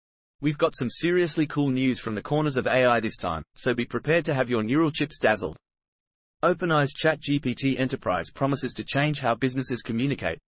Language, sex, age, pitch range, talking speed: English, male, 30-49, 120-145 Hz, 185 wpm